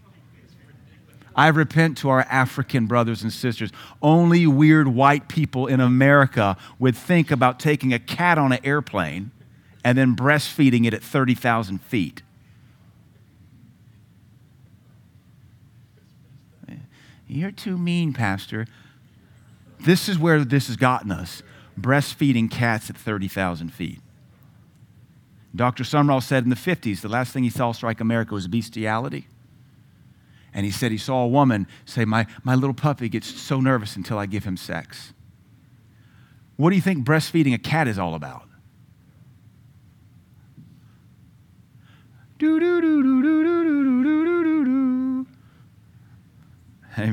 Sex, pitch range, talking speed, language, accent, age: male, 110-145 Hz, 125 wpm, English, American, 50-69